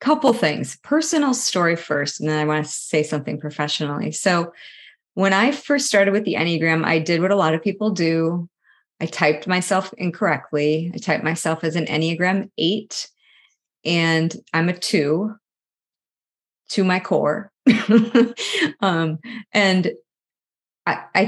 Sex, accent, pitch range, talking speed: female, American, 155-205 Hz, 140 wpm